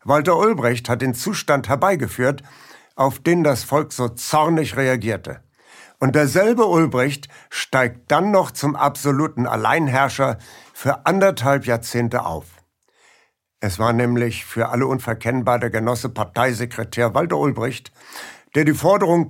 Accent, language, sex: German, German, male